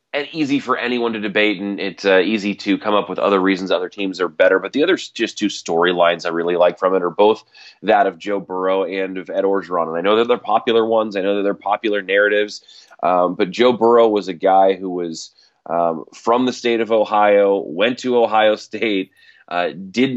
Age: 30-49